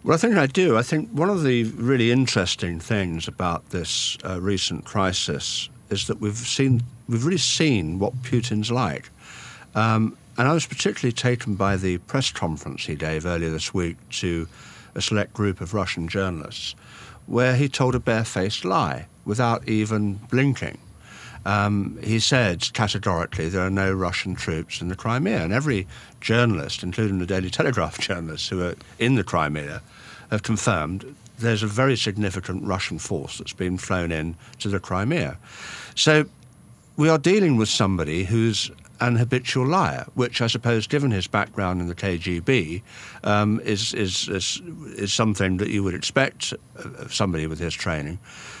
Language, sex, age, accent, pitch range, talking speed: English, male, 50-69, British, 90-120 Hz, 165 wpm